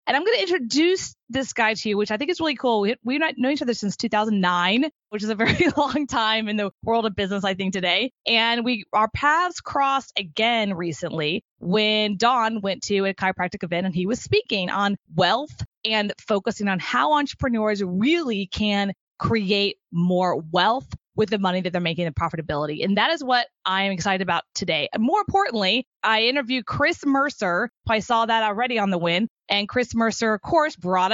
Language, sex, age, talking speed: English, female, 20-39, 195 wpm